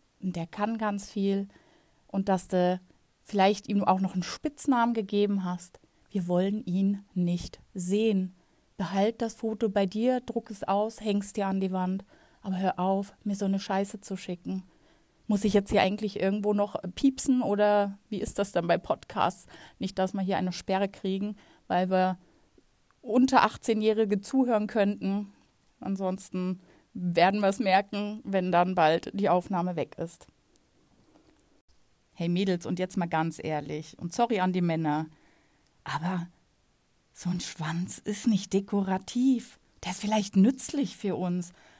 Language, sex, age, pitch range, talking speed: German, female, 30-49, 185-215 Hz, 155 wpm